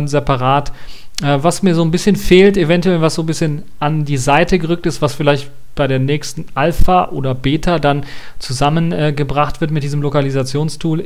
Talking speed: 170 wpm